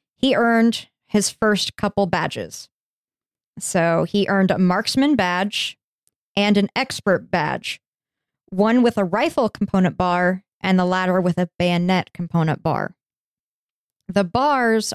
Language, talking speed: English, 130 wpm